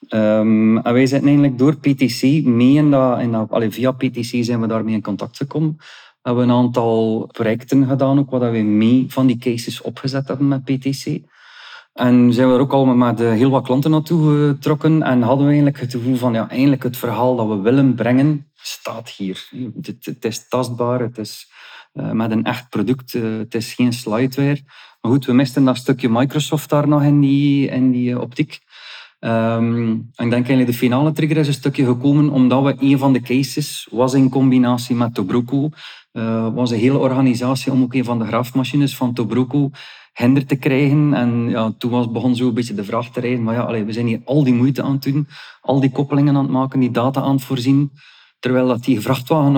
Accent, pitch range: Dutch, 120-140 Hz